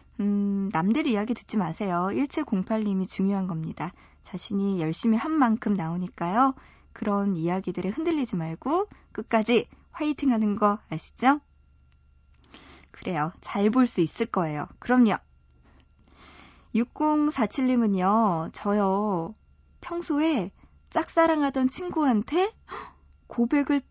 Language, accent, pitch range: Korean, native, 185-250 Hz